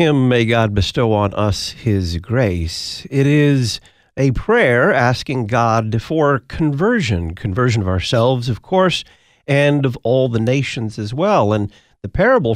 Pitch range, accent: 105-135 Hz, American